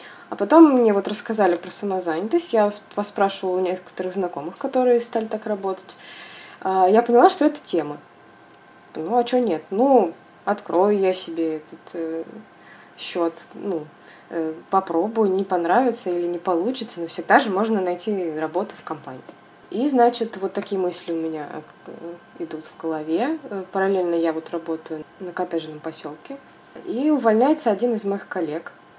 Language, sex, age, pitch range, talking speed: Russian, female, 20-39, 170-235 Hz, 145 wpm